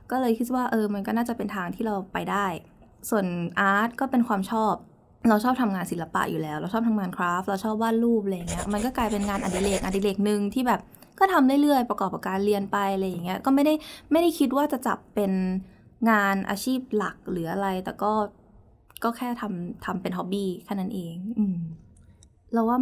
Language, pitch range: Thai, 185-230 Hz